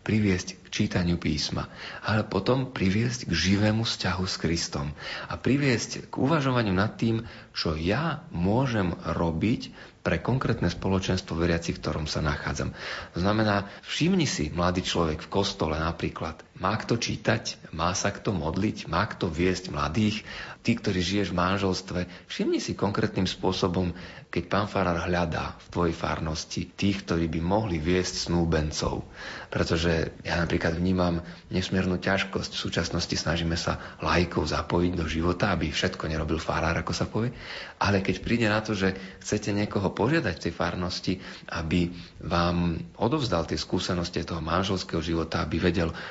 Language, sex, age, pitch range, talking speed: Slovak, male, 40-59, 85-105 Hz, 150 wpm